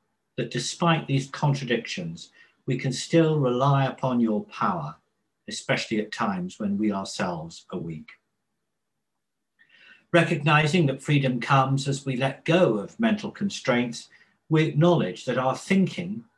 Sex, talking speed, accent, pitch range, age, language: male, 130 wpm, British, 130-175 Hz, 50-69, English